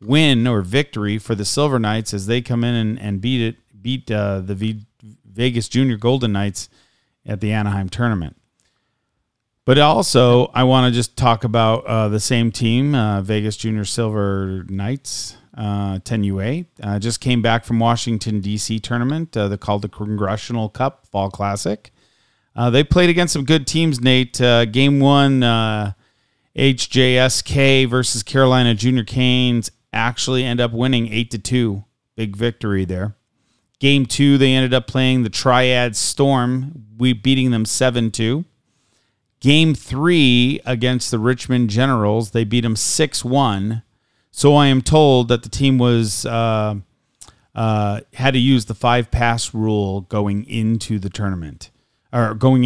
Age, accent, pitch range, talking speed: 40-59, American, 105-130 Hz, 155 wpm